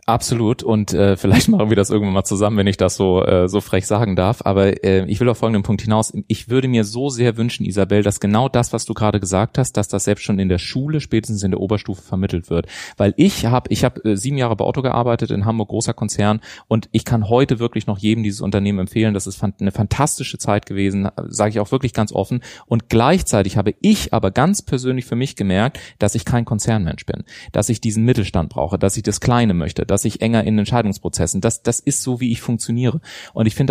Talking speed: 235 wpm